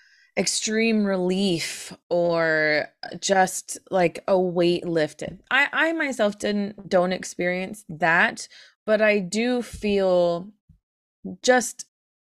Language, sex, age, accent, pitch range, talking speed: English, female, 20-39, American, 160-195 Hz, 100 wpm